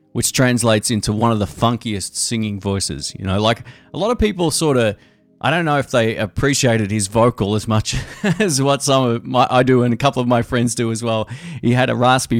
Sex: male